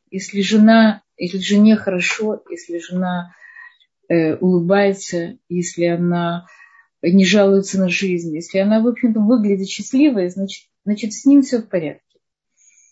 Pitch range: 180-225 Hz